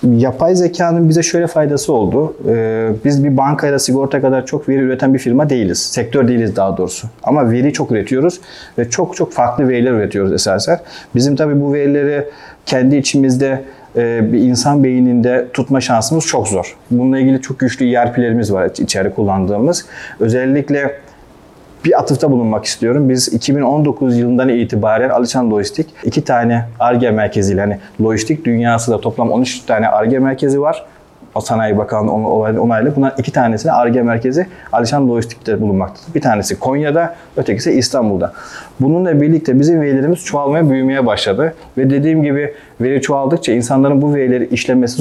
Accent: native